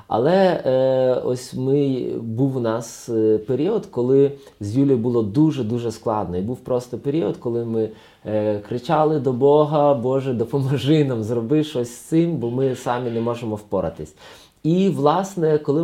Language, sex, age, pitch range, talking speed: Ukrainian, male, 30-49, 110-140 Hz, 150 wpm